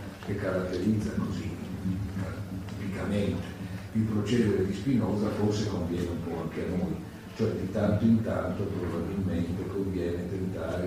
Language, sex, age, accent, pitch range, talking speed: Italian, male, 40-59, native, 95-115 Hz, 125 wpm